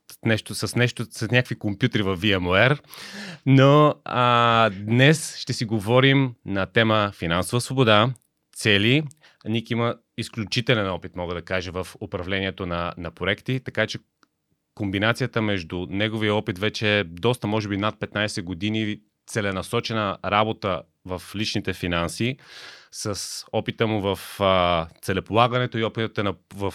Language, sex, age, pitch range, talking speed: Bulgarian, male, 30-49, 95-115 Hz, 130 wpm